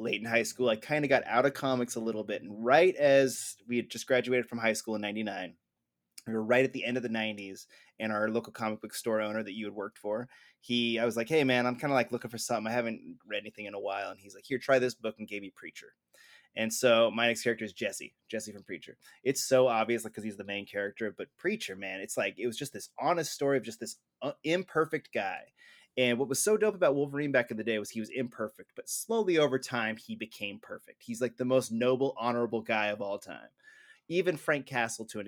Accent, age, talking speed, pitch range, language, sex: American, 20-39, 255 wpm, 110-130 Hz, English, male